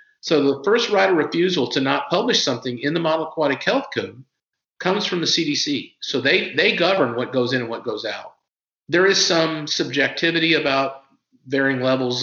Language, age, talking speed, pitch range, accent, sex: English, 50-69, 185 wpm, 125-150 Hz, American, male